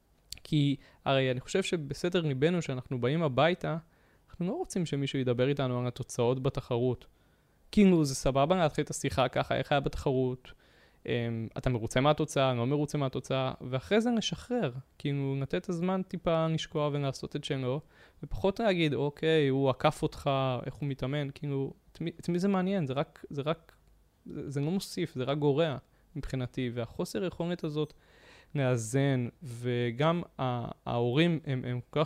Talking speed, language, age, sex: 155 wpm, Hebrew, 20-39, male